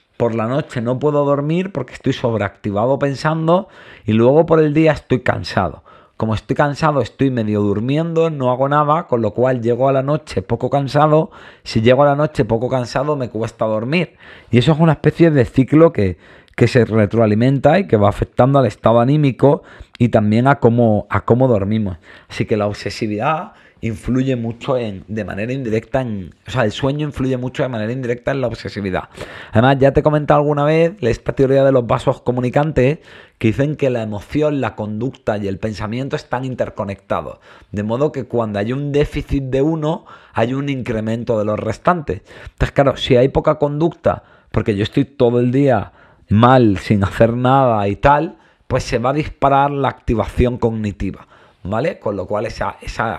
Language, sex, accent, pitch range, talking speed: Spanish, male, Spanish, 110-140 Hz, 185 wpm